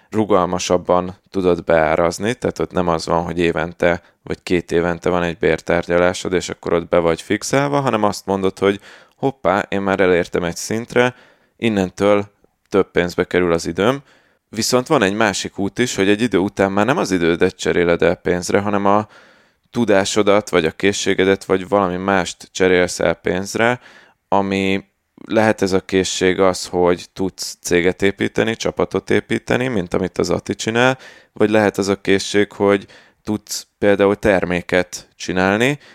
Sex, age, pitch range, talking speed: male, 20-39, 90-105 Hz, 155 wpm